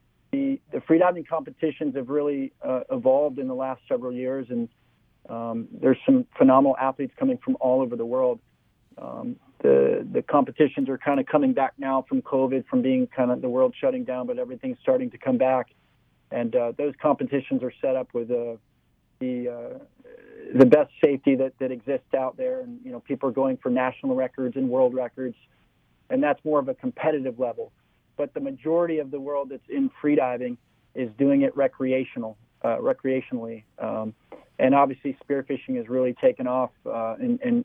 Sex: male